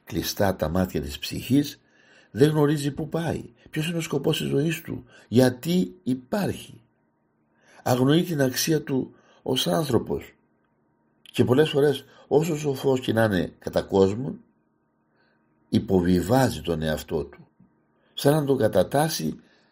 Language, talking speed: Greek, 120 wpm